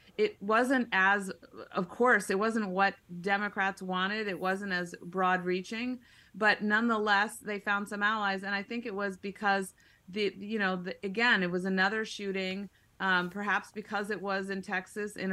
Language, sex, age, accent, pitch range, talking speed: English, female, 30-49, American, 185-220 Hz, 170 wpm